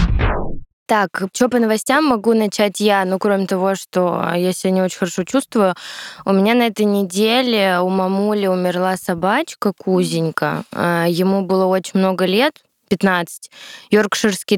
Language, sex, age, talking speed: Russian, female, 20-39, 140 wpm